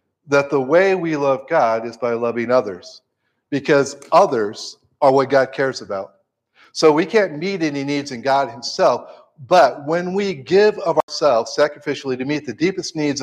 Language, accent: English, American